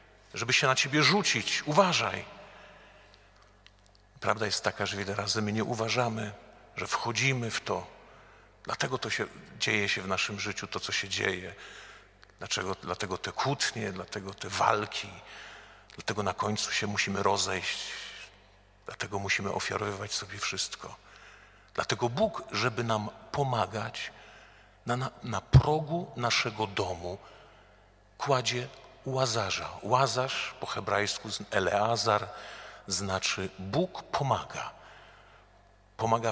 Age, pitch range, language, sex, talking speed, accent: 50-69, 100-125 Hz, Polish, male, 110 wpm, native